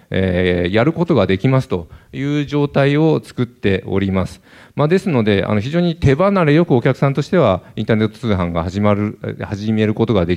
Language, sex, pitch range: Japanese, male, 95-135 Hz